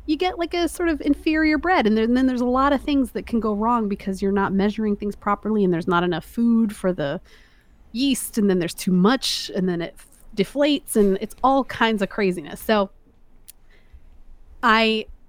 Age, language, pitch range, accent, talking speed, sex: 30-49, English, 190-230 Hz, American, 195 wpm, female